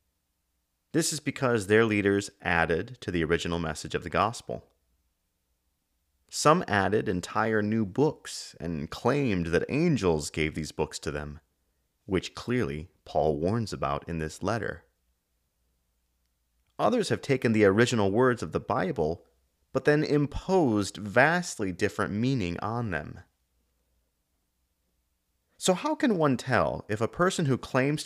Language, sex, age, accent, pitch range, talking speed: English, male, 30-49, American, 75-115 Hz, 135 wpm